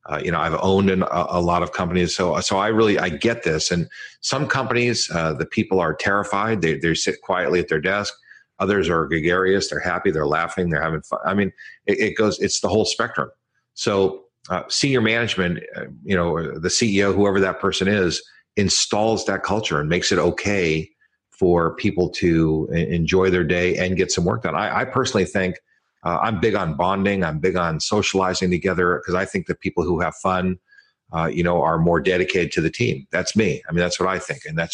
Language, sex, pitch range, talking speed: English, male, 80-95 Hz, 215 wpm